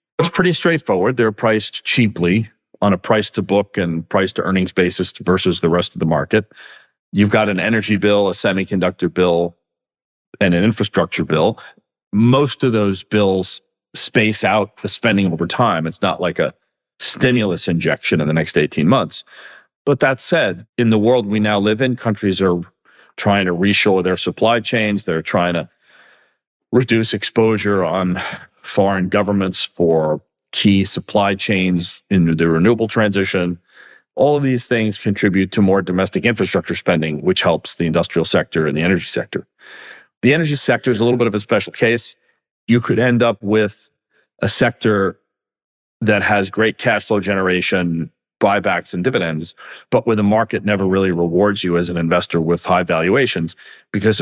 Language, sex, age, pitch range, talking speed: English, male, 40-59, 90-110 Hz, 160 wpm